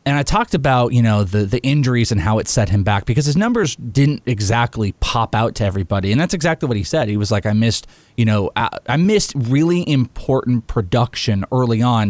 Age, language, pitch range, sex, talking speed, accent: 30-49, English, 110-140 Hz, male, 225 wpm, American